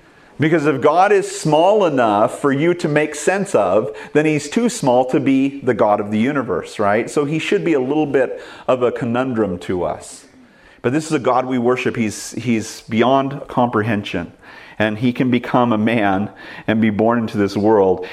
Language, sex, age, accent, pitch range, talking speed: English, male, 40-59, American, 115-155 Hz, 195 wpm